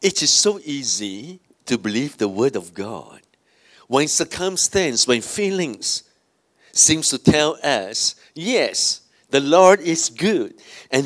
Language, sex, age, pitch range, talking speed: English, male, 50-69, 125-165 Hz, 130 wpm